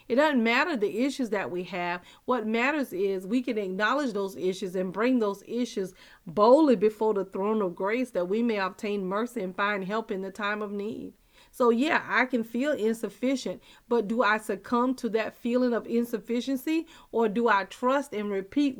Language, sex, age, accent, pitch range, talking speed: English, female, 40-59, American, 205-250 Hz, 190 wpm